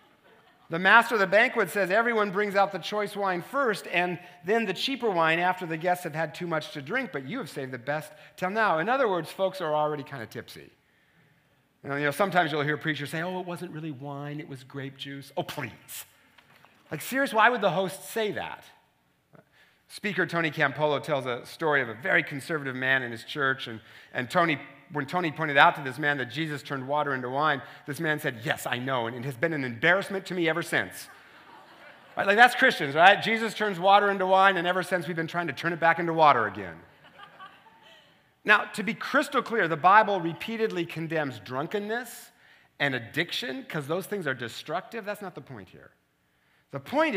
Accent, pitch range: American, 145-200 Hz